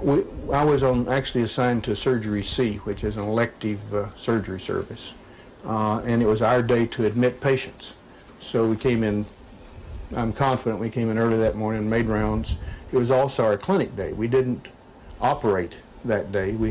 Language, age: English, 60-79